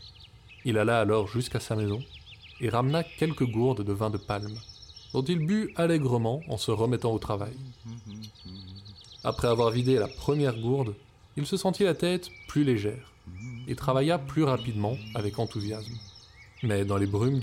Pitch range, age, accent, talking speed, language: 105-130 Hz, 20-39, French, 160 wpm, French